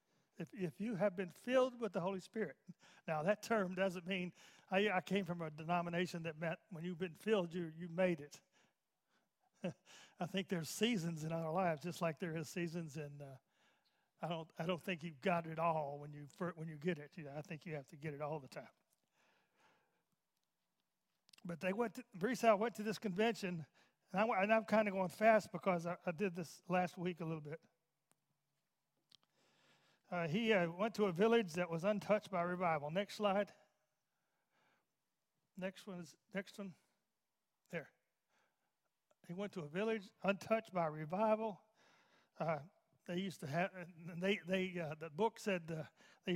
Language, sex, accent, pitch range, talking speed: English, male, American, 165-200 Hz, 185 wpm